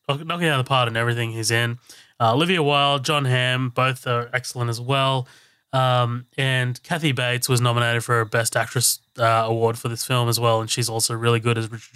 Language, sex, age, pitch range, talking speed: English, male, 20-39, 120-145 Hz, 220 wpm